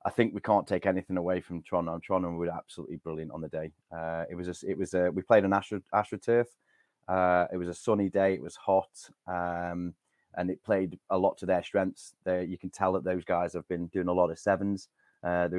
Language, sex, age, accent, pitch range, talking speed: English, male, 30-49, British, 85-100 Hz, 235 wpm